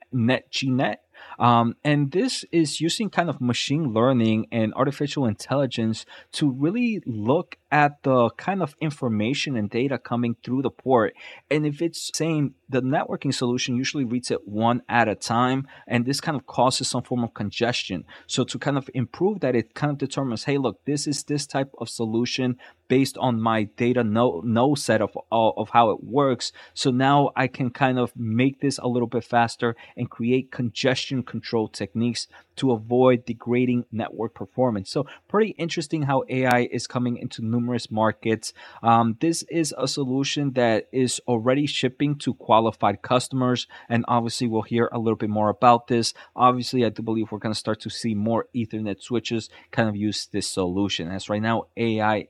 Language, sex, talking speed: English, male, 180 wpm